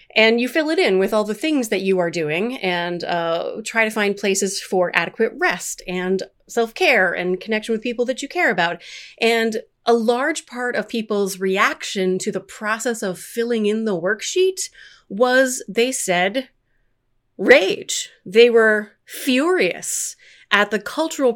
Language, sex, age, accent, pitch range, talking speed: English, female, 30-49, American, 190-250 Hz, 160 wpm